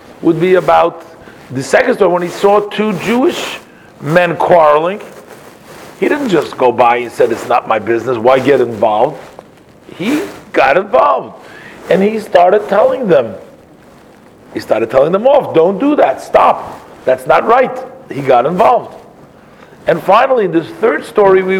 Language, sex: English, male